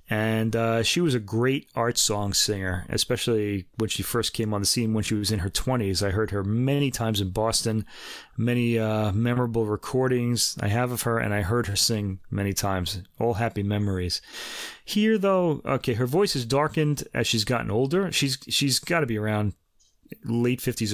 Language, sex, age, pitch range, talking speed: English, male, 30-49, 105-150 Hz, 190 wpm